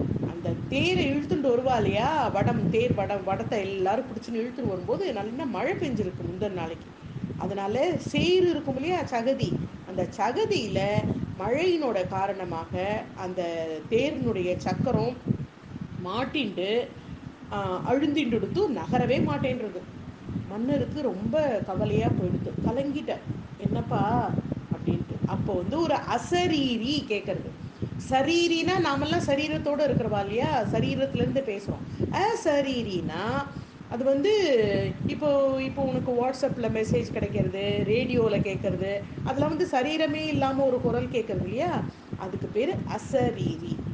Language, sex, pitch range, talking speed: Tamil, female, 200-295 Hz, 95 wpm